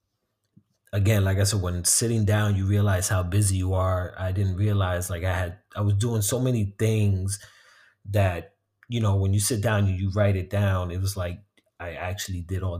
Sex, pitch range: male, 90-100 Hz